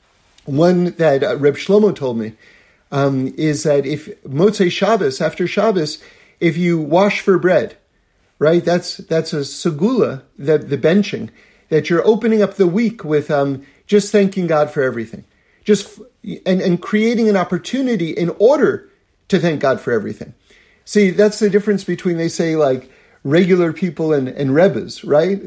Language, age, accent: English, 50-69, American